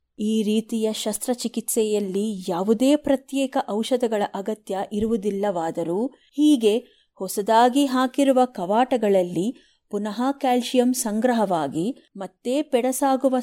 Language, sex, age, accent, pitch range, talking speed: Kannada, female, 30-49, native, 200-260 Hz, 75 wpm